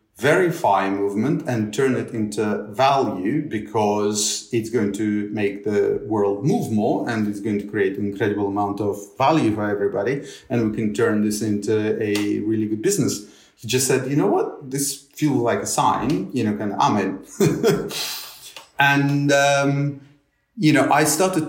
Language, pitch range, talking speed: English, 105-140 Hz, 170 wpm